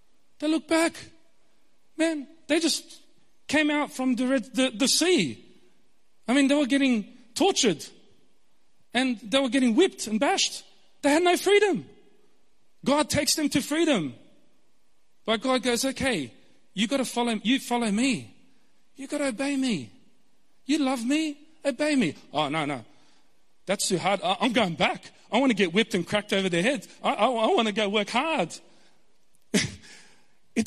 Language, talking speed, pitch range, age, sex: English, 170 wpm, 180-275 Hz, 40-59, male